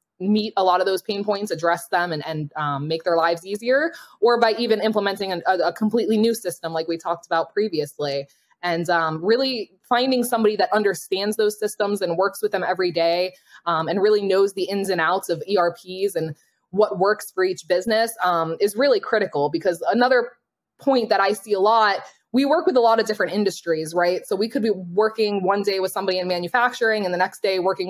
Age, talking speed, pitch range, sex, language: 20-39, 210 wpm, 180-220 Hz, female, English